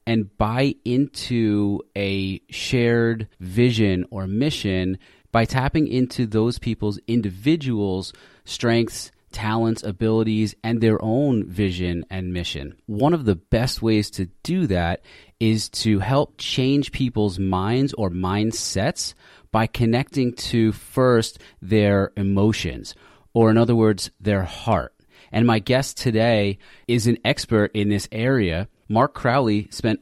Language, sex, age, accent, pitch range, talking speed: English, male, 30-49, American, 100-120 Hz, 130 wpm